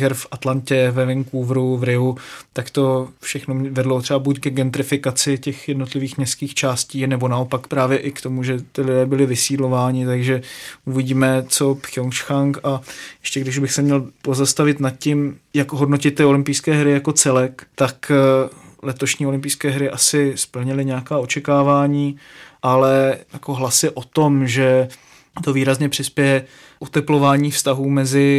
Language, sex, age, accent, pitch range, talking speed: Czech, male, 20-39, native, 130-145 Hz, 145 wpm